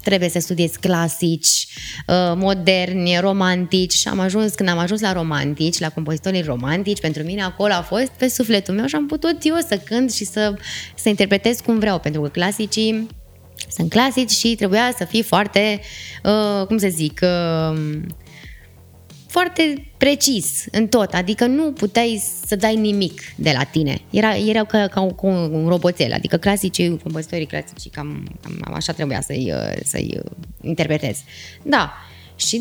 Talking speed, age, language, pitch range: 155 wpm, 20-39, Romanian, 155-205 Hz